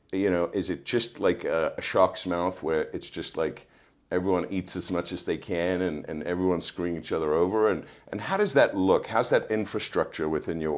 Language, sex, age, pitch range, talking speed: English, male, 50-69, 80-95 Hz, 215 wpm